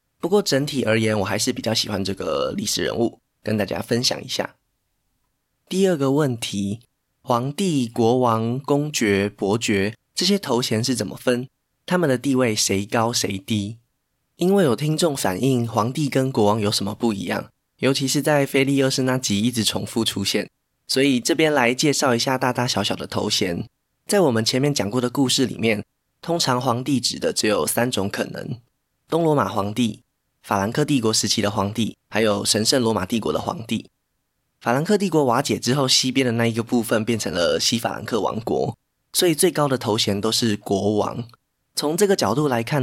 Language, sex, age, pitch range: Chinese, male, 20-39, 110-135 Hz